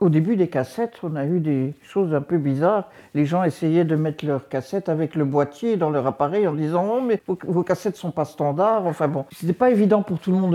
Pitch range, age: 140-185 Hz, 60-79